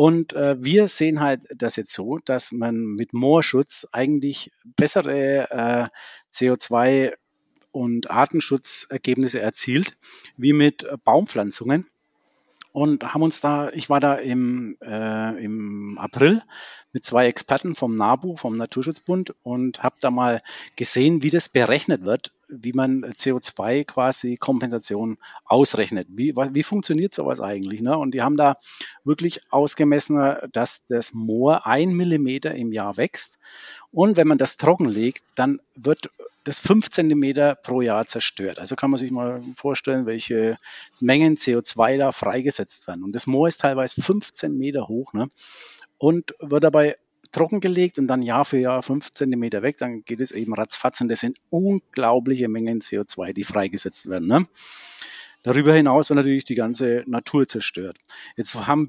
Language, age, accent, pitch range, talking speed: German, 50-69, German, 120-150 Hz, 145 wpm